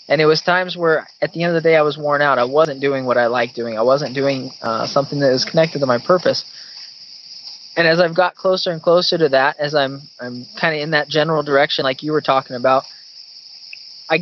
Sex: male